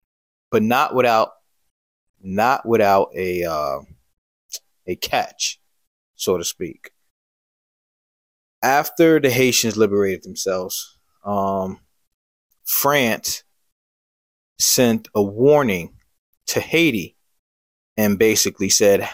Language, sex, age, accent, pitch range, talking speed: English, male, 20-39, American, 95-110 Hz, 85 wpm